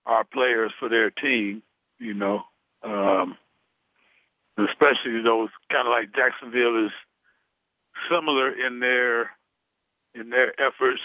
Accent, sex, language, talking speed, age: American, male, English, 115 wpm, 60-79